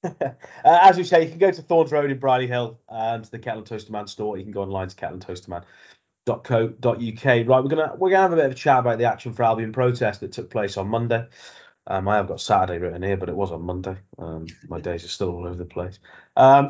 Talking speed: 260 wpm